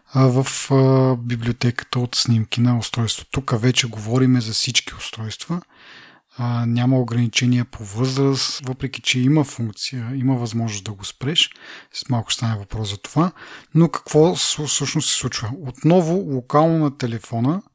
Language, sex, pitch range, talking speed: Bulgarian, male, 120-145 Hz, 135 wpm